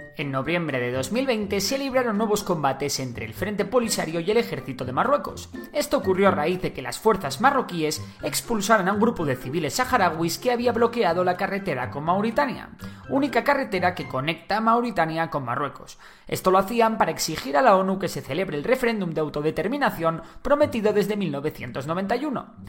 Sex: male